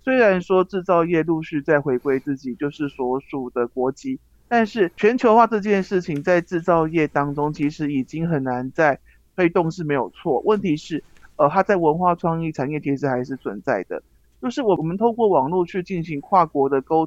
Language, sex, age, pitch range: Chinese, male, 50-69, 145-190 Hz